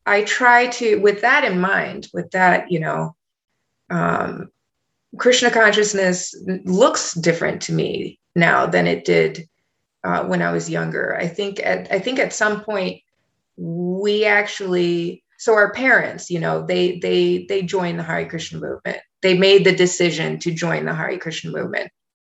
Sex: female